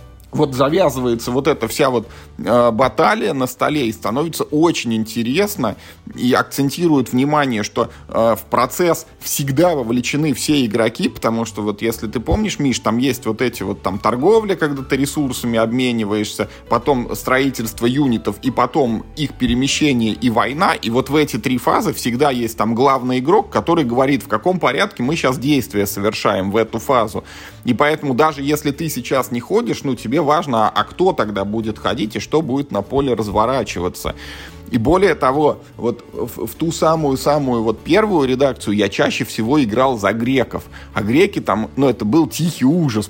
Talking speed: 170 wpm